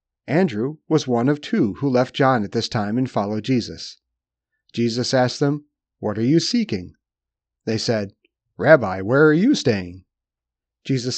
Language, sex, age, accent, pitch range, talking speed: English, male, 40-59, American, 110-170 Hz, 155 wpm